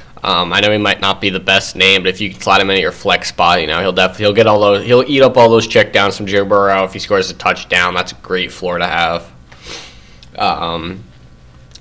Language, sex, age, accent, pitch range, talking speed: English, male, 20-39, American, 90-120 Hz, 260 wpm